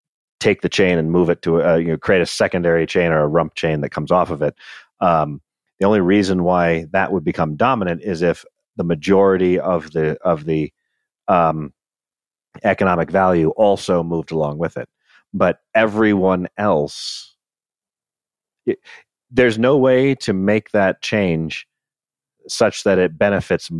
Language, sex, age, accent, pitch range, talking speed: English, male, 40-59, American, 80-105 Hz, 155 wpm